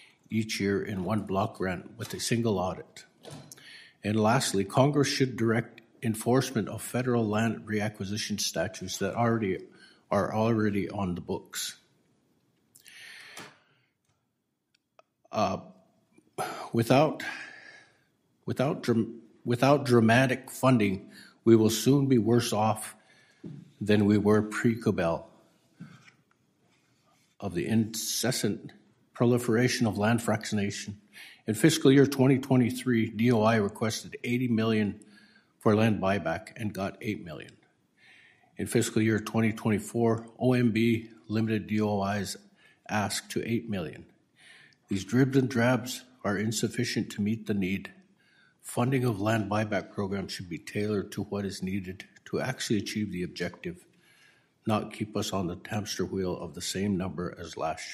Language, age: English, 50-69